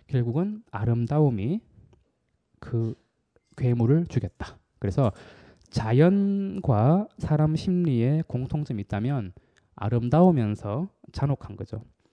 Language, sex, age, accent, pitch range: Korean, male, 20-39, native, 110-170 Hz